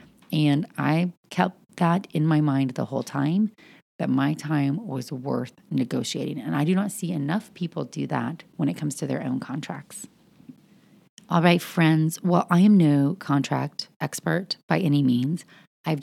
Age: 30-49